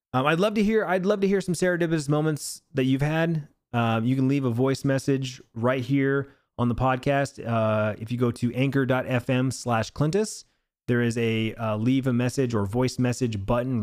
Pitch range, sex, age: 115-145 Hz, male, 20-39